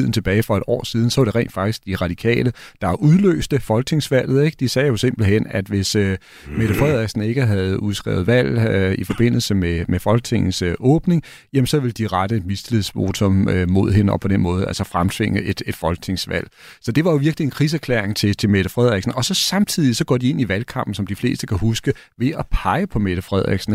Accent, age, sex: native, 40-59, male